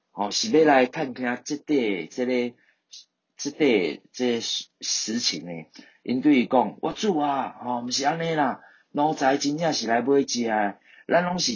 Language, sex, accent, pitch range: Chinese, male, native, 105-155 Hz